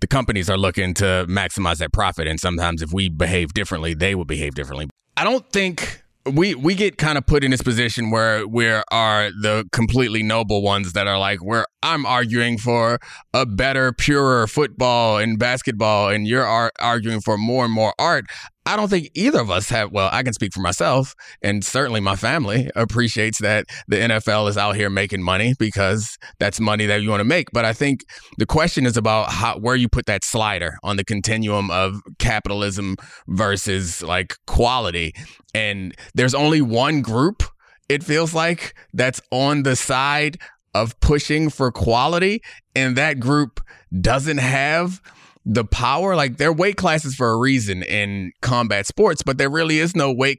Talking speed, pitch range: 180 wpm, 105-140 Hz